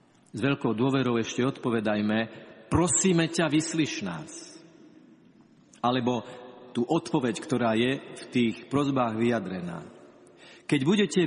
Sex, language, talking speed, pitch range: male, Slovak, 105 wpm, 115-160 Hz